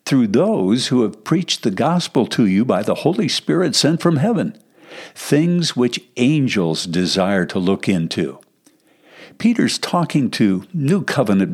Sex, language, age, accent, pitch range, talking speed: male, English, 60-79, American, 105-170 Hz, 145 wpm